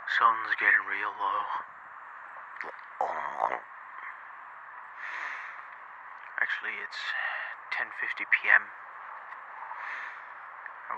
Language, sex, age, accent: English, male, 30-49, American